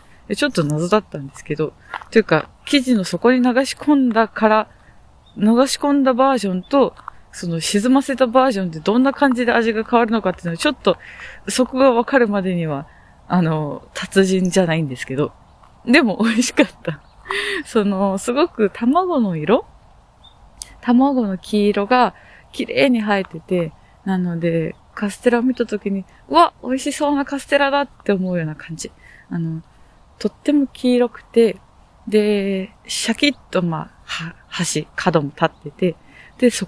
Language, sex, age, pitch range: Japanese, female, 20-39, 180-245 Hz